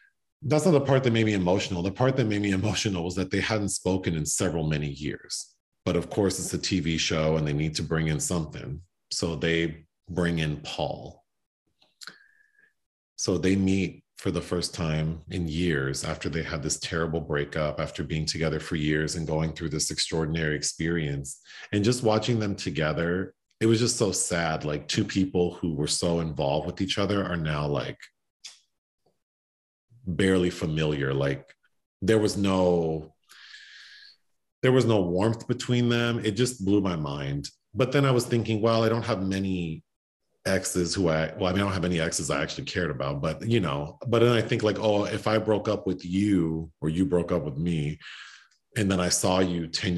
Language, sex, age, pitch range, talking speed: English, male, 40-59, 80-110 Hz, 190 wpm